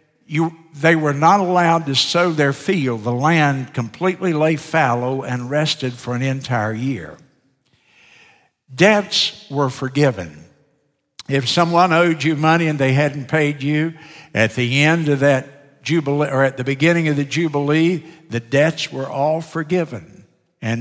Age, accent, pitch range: 60-79, American, 125-155 Hz